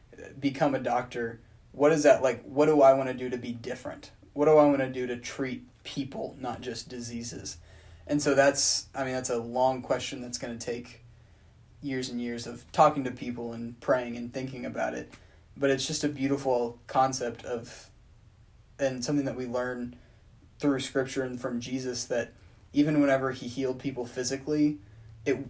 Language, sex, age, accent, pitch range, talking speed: English, male, 20-39, American, 115-135 Hz, 185 wpm